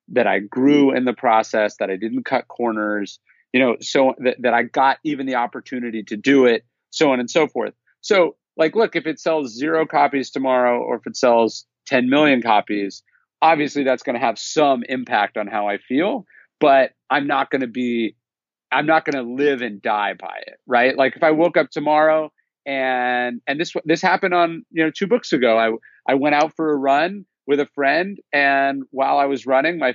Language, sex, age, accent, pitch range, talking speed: English, male, 40-59, American, 120-155 Hz, 205 wpm